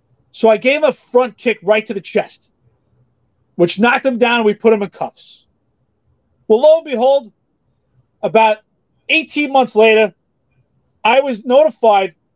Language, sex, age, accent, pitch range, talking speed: English, male, 30-49, American, 200-250 Hz, 150 wpm